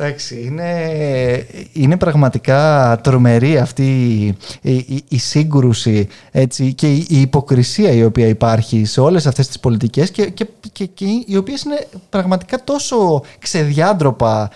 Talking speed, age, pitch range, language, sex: 130 wpm, 20-39, 130-190 Hz, Greek, male